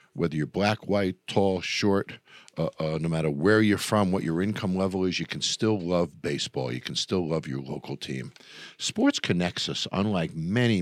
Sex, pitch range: male, 80-110 Hz